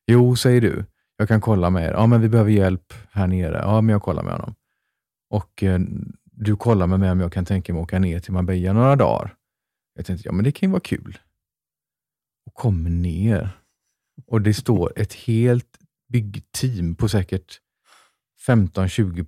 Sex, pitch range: male, 90-110 Hz